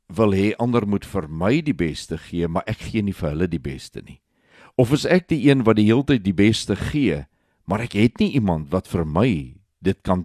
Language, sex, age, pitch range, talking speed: Swedish, male, 60-79, 95-125 Hz, 235 wpm